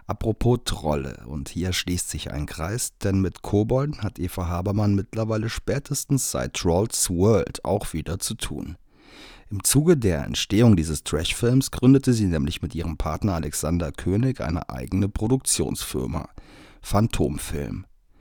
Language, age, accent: German, 40-59, German